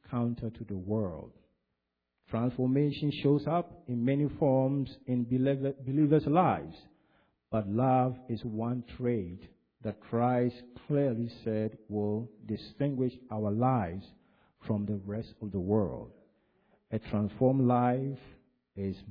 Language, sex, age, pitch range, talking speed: English, male, 50-69, 105-135 Hz, 115 wpm